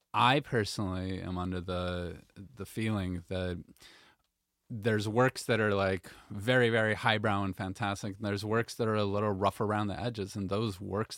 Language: English